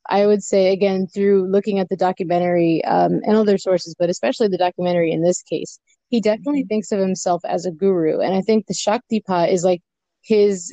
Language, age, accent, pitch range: English, 20-39, American, 180-210 Hz